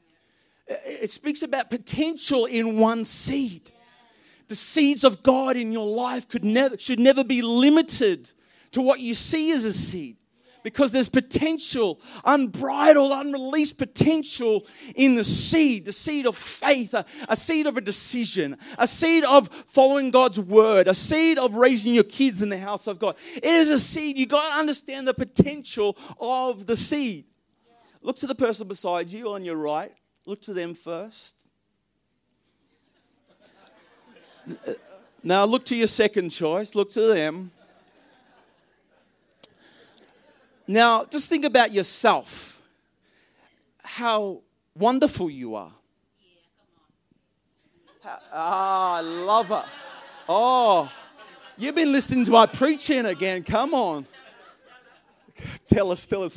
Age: 30-49